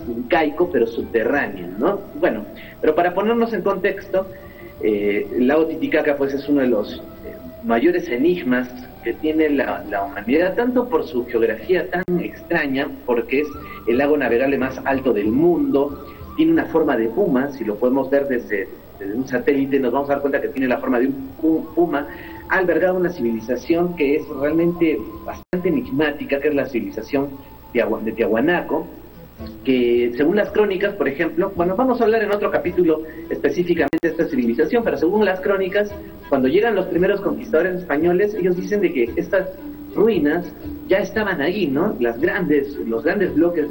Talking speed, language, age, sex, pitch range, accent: 170 wpm, Spanish, 40-59, male, 135-195 Hz, Mexican